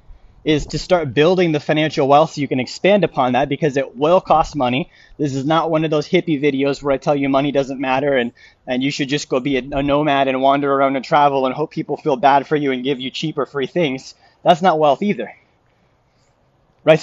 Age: 20-39